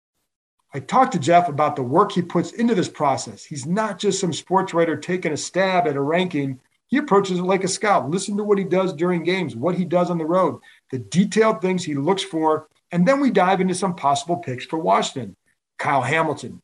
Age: 50-69